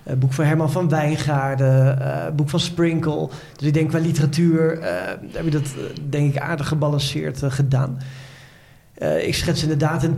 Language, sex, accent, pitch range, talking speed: Dutch, male, Dutch, 140-165 Hz, 160 wpm